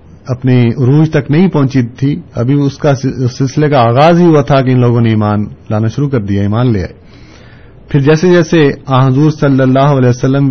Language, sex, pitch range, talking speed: Urdu, male, 115-140 Hz, 200 wpm